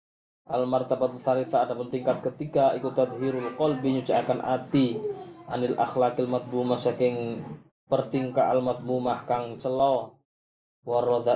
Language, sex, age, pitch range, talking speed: Malay, male, 20-39, 120-135 Hz, 115 wpm